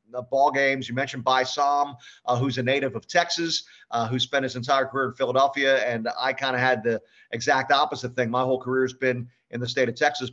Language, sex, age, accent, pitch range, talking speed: English, male, 50-69, American, 125-155 Hz, 225 wpm